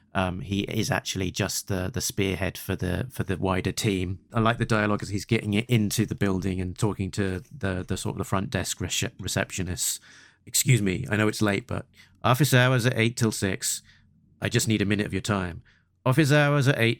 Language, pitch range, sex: English, 95-115 Hz, male